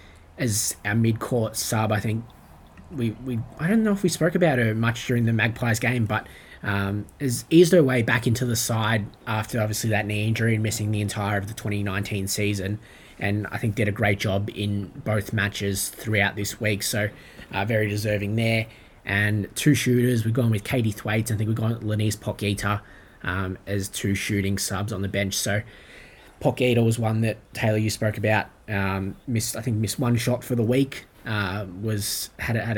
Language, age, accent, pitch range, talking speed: English, 20-39, Australian, 100-115 Hz, 200 wpm